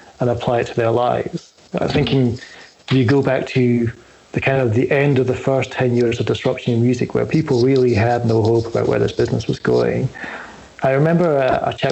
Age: 40-59